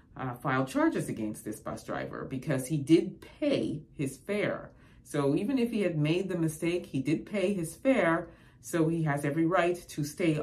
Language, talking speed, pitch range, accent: English, 190 wpm, 130-160 Hz, American